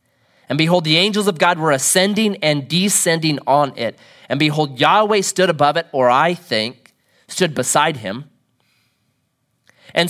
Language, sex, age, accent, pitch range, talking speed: English, male, 30-49, American, 130-185 Hz, 150 wpm